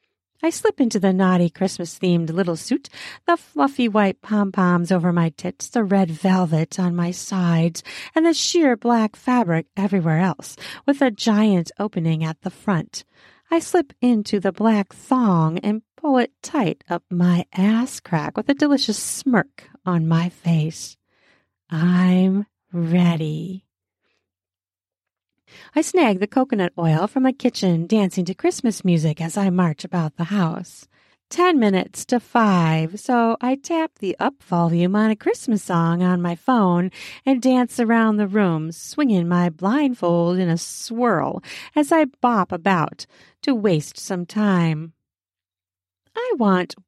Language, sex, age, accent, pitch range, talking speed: English, female, 40-59, American, 170-240 Hz, 145 wpm